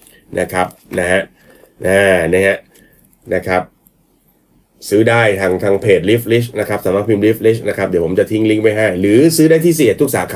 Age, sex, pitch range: 30-49, male, 105-140 Hz